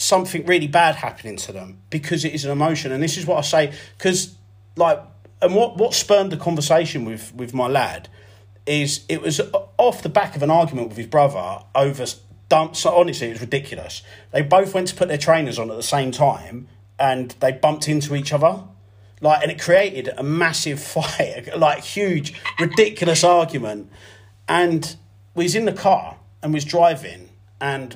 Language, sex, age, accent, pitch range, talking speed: English, male, 40-59, British, 130-175 Hz, 180 wpm